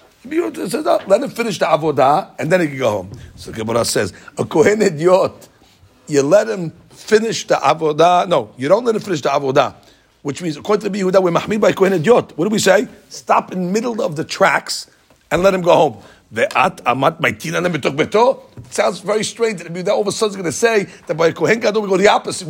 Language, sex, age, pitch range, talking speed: English, male, 50-69, 170-235 Hz, 210 wpm